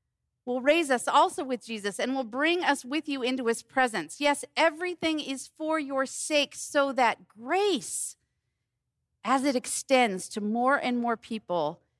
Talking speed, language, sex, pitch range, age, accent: 160 wpm, English, female, 185-275 Hz, 40-59, American